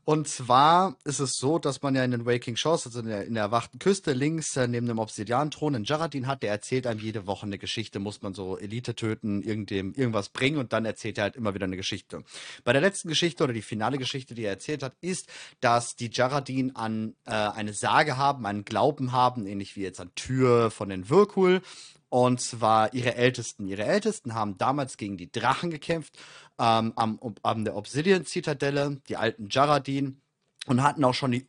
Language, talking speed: German, 205 wpm